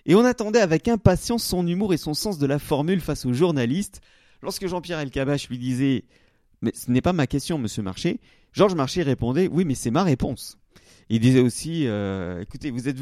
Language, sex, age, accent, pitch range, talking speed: French, male, 40-59, French, 115-160 Hz, 220 wpm